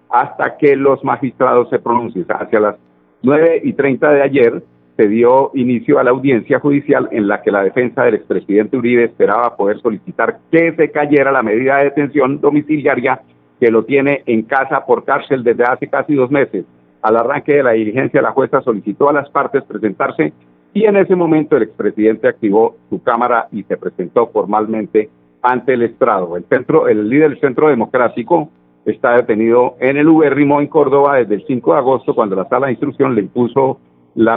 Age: 50-69